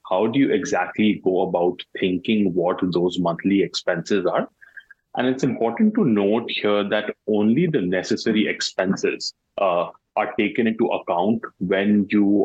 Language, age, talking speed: English, 30-49, 145 wpm